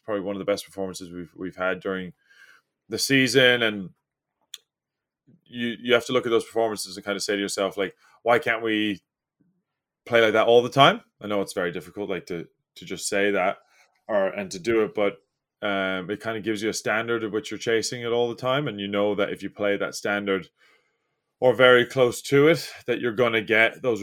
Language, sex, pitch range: English, male, 105-125 Hz